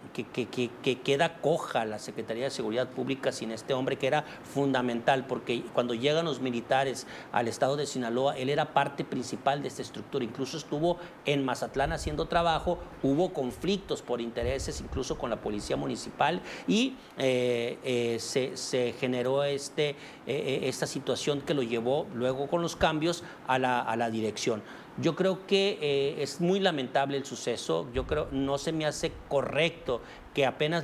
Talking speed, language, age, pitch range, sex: 170 wpm, Spanish, 50-69, 125-145 Hz, male